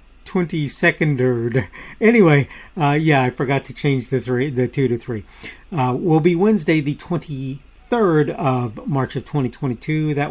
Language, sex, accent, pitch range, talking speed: English, male, American, 125-165 Hz, 150 wpm